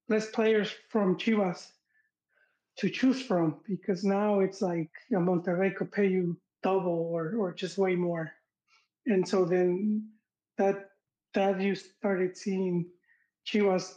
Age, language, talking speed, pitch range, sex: 30-49, English, 135 wpm, 190-225 Hz, male